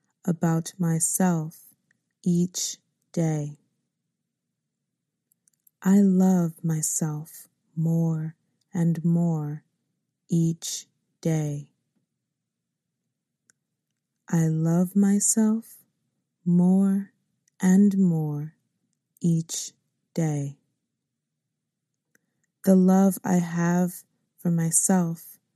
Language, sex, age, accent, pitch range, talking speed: English, female, 20-39, American, 160-185 Hz, 60 wpm